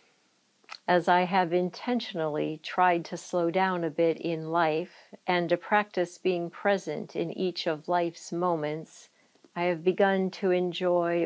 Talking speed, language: 145 wpm, English